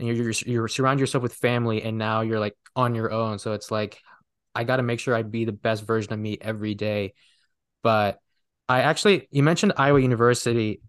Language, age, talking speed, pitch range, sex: English, 20-39, 215 wpm, 115-135 Hz, male